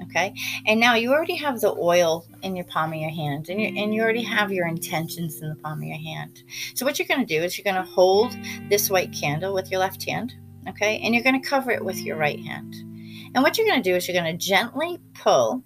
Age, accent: 40-59, American